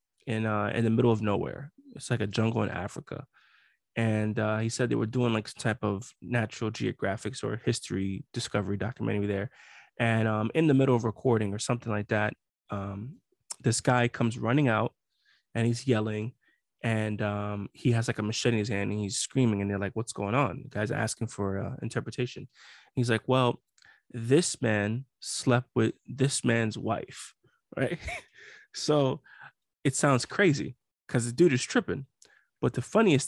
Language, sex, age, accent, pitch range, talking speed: English, male, 20-39, American, 110-130 Hz, 180 wpm